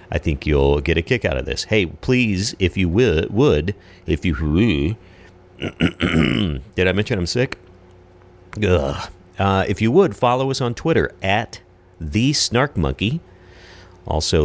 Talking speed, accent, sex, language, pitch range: 135 wpm, American, male, English, 80-105 Hz